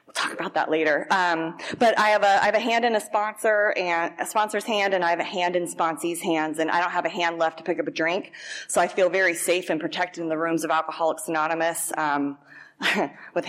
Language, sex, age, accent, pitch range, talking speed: English, female, 20-39, American, 165-205 Hz, 245 wpm